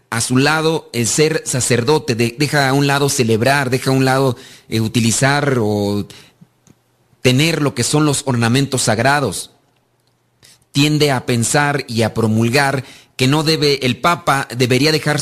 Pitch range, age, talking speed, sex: 125-155 Hz, 40-59, 145 wpm, male